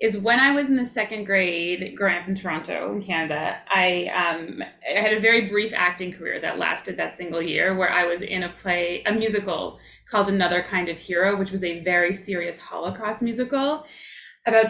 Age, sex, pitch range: 20-39, female, 180-235 Hz